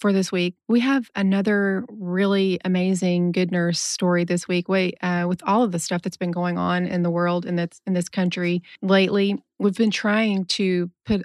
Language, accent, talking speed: English, American, 205 wpm